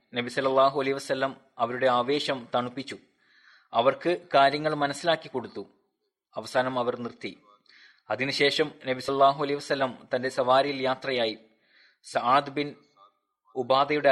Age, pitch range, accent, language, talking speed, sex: 20-39, 125-145 Hz, native, Malayalam, 100 wpm, male